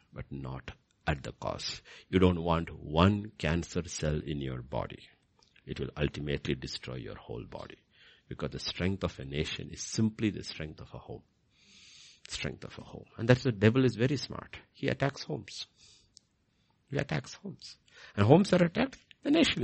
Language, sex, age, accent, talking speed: English, male, 60-79, Indian, 175 wpm